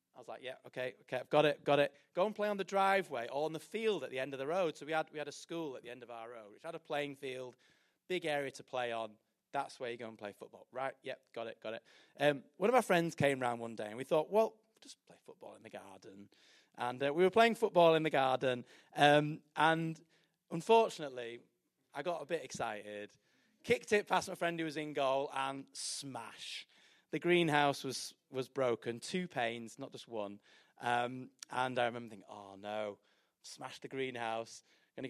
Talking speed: 225 wpm